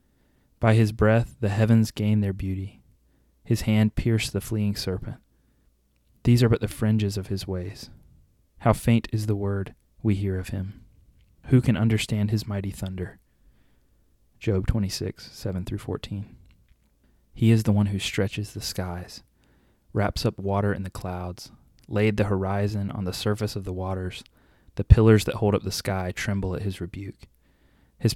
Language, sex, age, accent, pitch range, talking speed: English, male, 30-49, American, 90-110 Hz, 160 wpm